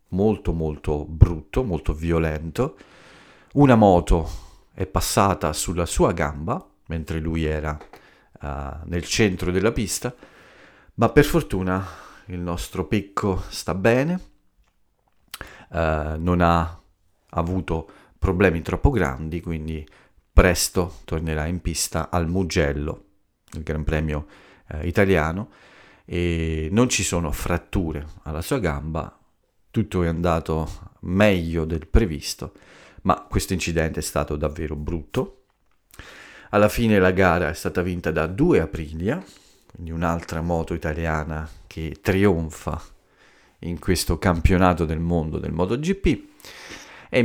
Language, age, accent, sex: Italian, 40-59, native, male